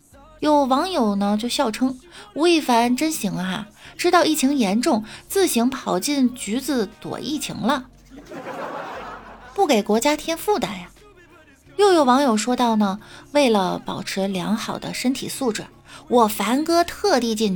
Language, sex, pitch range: Chinese, female, 195-285 Hz